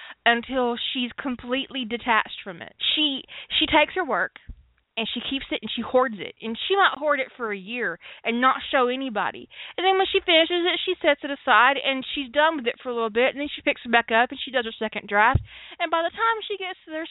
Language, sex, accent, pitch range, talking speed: English, female, American, 230-315 Hz, 250 wpm